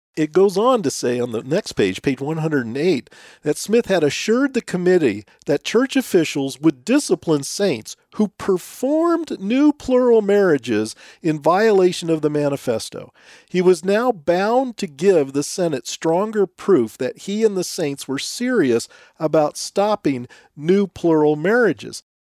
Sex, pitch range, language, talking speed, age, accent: male, 150-225 Hz, English, 150 wpm, 40-59, American